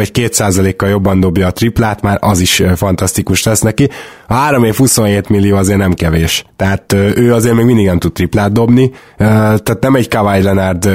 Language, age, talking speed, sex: Hungarian, 20-39, 185 wpm, male